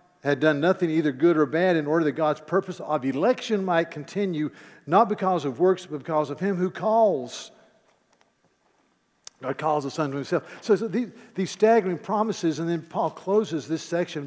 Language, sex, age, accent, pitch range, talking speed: English, male, 50-69, American, 140-185 Hz, 180 wpm